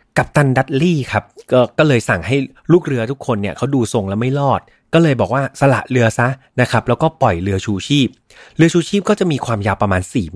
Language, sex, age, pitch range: Thai, male, 30-49, 105-140 Hz